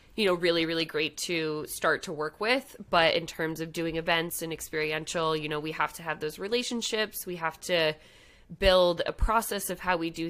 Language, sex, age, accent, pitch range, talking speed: English, female, 20-39, American, 155-180 Hz, 210 wpm